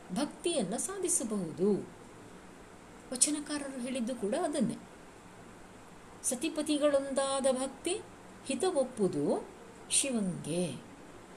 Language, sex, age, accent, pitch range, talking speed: Kannada, female, 60-79, native, 185-270 Hz, 60 wpm